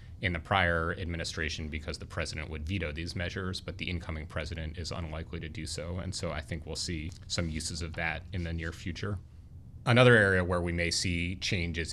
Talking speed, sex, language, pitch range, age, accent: 205 wpm, male, English, 80-95 Hz, 30-49, American